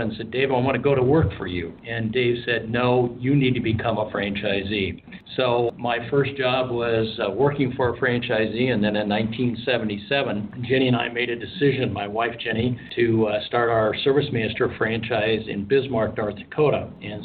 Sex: male